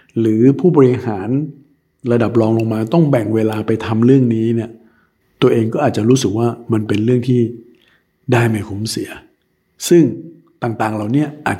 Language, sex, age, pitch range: Thai, male, 60-79, 95-120 Hz